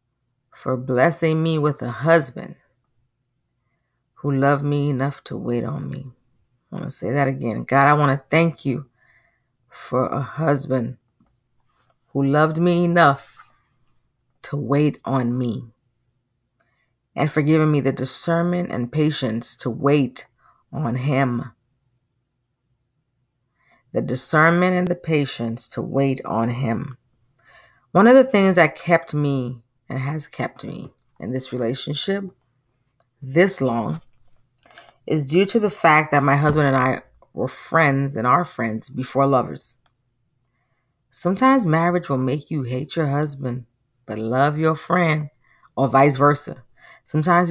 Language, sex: English, female